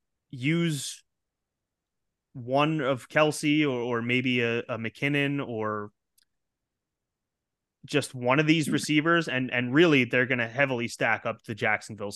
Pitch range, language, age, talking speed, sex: 115-145 Hz, English, 30-49, 135 wpm, male